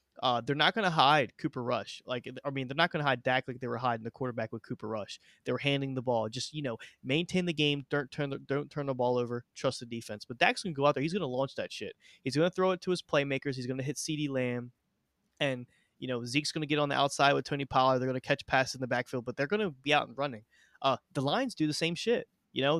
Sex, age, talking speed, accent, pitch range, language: male, 20-39, 300 wpm, American, 125-150 Hz, English